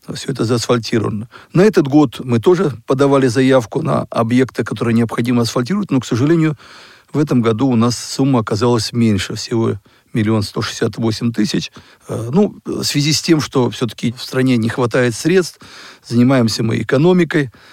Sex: male